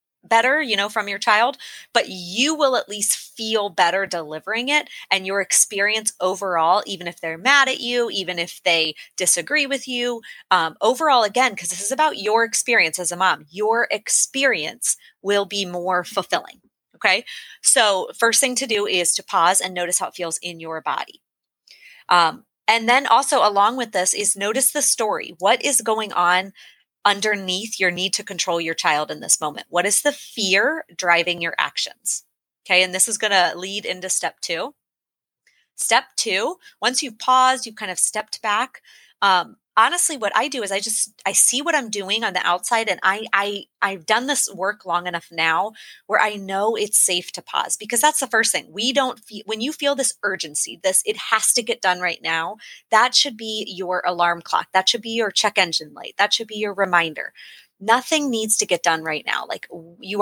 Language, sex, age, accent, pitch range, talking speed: English, female, 30-49, American, 180-240 Hz, 200 wpm